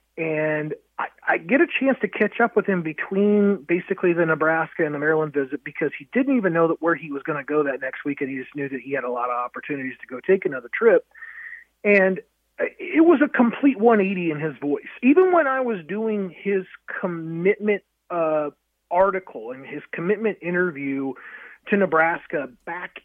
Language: English